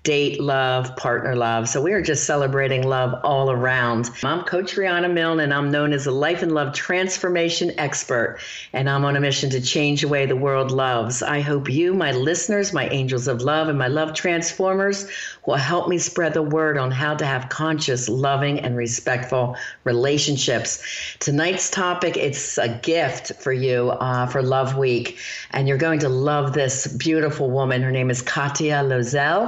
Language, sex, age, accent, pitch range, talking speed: English, female, 50-69, American, 130-165 Hz, 185 wpm